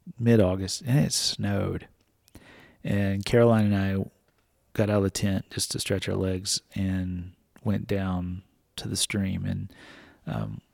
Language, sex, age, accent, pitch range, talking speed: English, male, 30-49, American, 95-110 Hz, 150 wpm